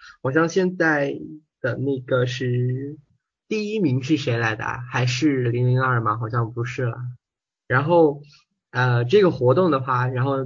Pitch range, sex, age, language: 120-150 Hz, male, 20-39, Chinese